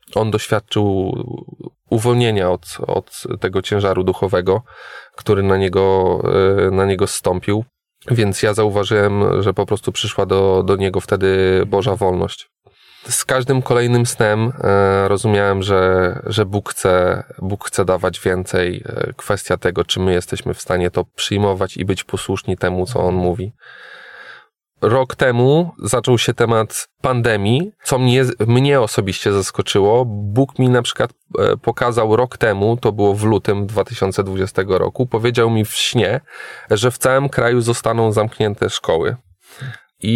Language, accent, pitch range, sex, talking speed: Polish, native, 95-120 Hz, male, 135 wpm